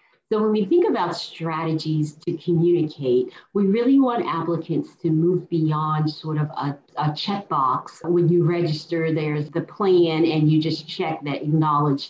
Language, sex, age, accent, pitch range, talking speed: English, female, 40-59, American, 145-175 Hz, 160 wpm